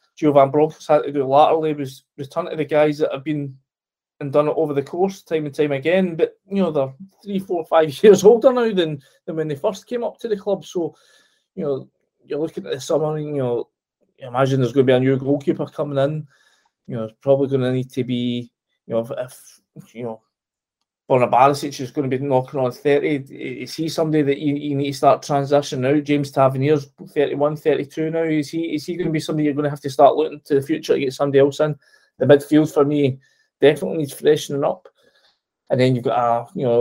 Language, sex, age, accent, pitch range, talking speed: English, male, 20-39, British, 135-160 Hz, 235 wpm